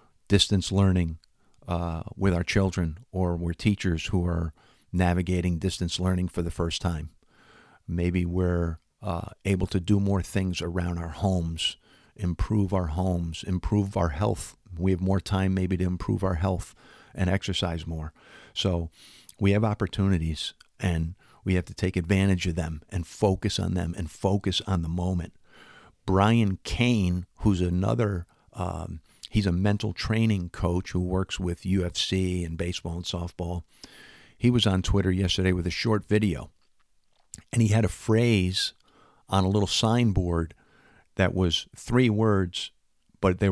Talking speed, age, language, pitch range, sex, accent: 150 wpm, 50-69, English, 90-105 Hz, male, American